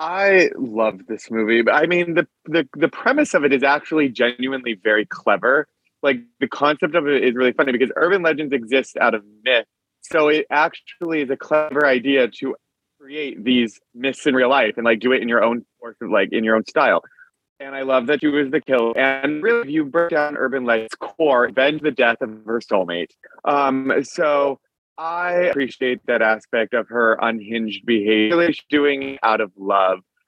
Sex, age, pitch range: male, 30-49, 115-145 Hz